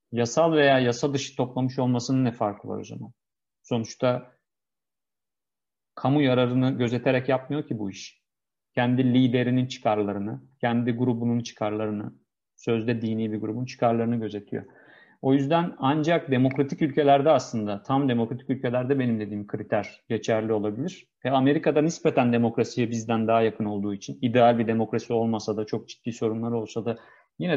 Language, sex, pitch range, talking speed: Turkish, male, 115-135 Hz, 140 wpm